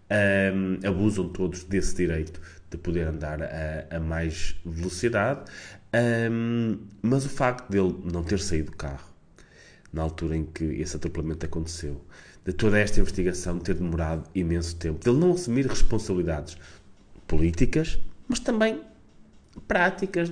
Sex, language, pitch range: male, Portuguese, 85-105 Hz